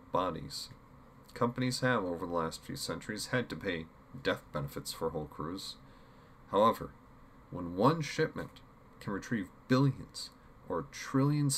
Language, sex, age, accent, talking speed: English, male, 40-59, American, 130 wpm